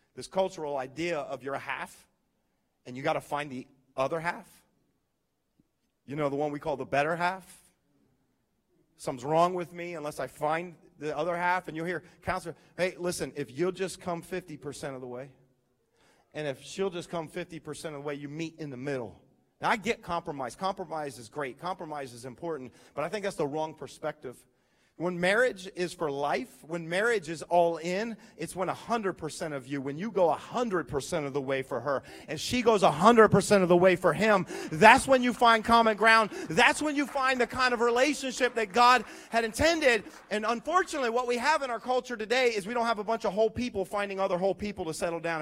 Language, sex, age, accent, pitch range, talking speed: English, male, 40-59, American, 150-225 Hz, 215 wpm